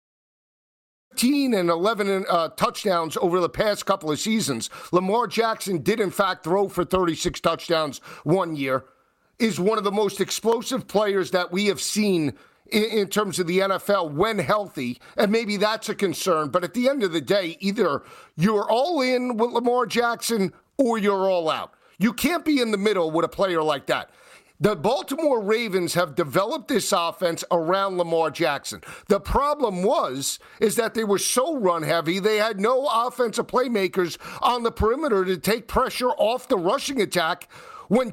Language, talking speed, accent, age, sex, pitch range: English, 170 wpm, American, 50-69, male, 180-230 Hz